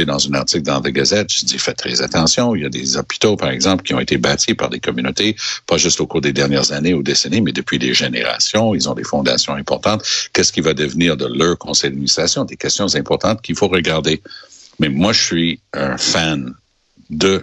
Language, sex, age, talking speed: French, male, 60-79, 220 wpm